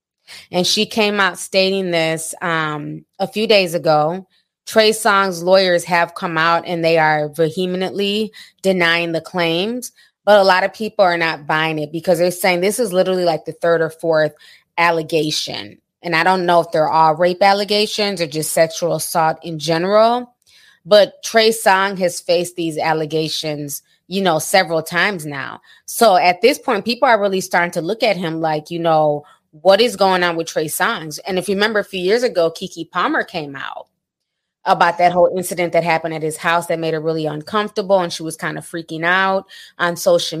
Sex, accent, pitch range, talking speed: female, American, 160-195 Hz, 190 wpm